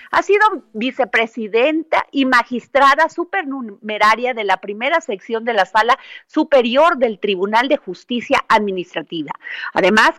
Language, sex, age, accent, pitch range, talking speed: Spanish, female, 40-59, Mexican, 205-290 Hz, 120 wpm